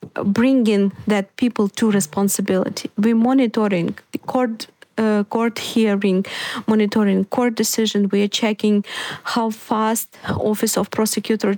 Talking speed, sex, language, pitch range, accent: 120 wpm, female, Ukrainian, 205-240 Hz, native